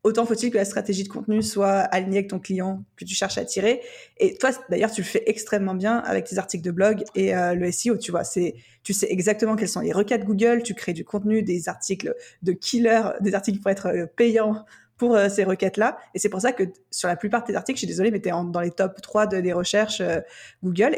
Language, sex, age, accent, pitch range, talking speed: French, female, 20-39, French, 190-225 Hz, 250 wpm